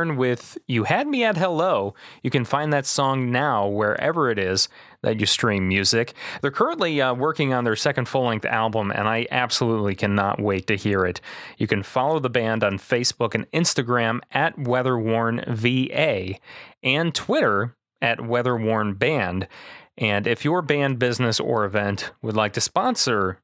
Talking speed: 160 wpm